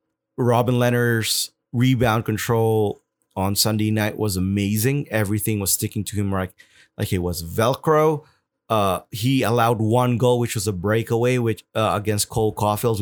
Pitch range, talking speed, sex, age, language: 105-135 Hz, 150 wpm, male, 20-39, English